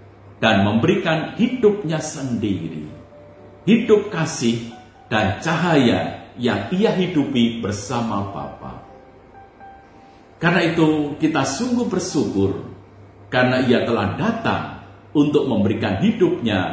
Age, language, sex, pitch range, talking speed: 50-69, Indonesian, male, 100-150 Hz, 90 wpm